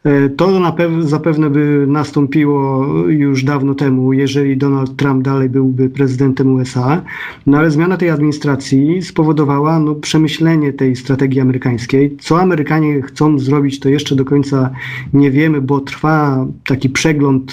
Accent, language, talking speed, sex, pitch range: native, Polish, 130 wpm, male, 135-150 Hz